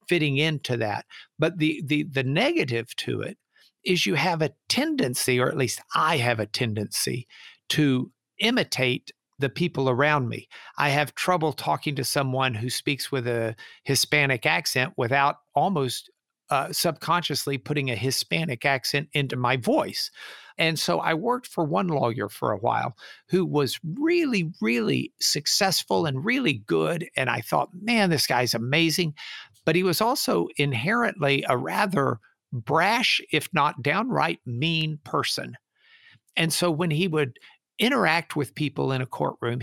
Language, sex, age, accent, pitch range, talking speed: English, male, 60-79, American, 130-170 Hz, 150 wpm